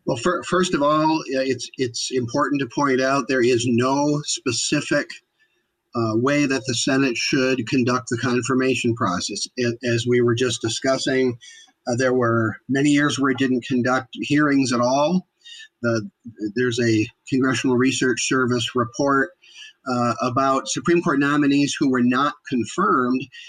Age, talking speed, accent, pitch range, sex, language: 50-69, 150 wpm, American, 125-150 Hz, male, English